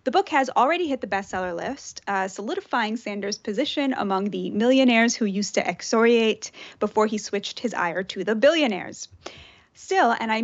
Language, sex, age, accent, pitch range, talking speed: English, female, 20-39, American, 200-270 Hz, 170 wpm